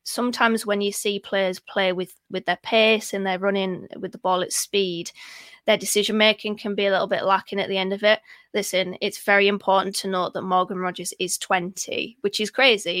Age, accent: 20-39, British